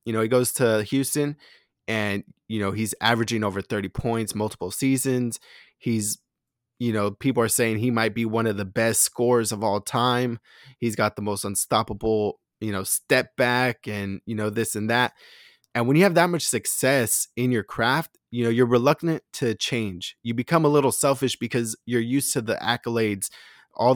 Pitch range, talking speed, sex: 110-130 Hz, 190 wpm, male